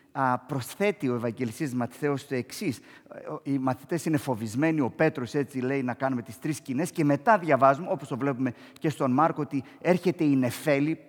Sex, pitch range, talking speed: male, 120-160 Hz, 175 wpm